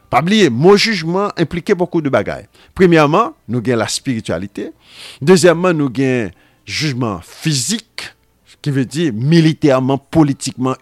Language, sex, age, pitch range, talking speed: French, male, 50-69, 125-190 Hz, 130 wpm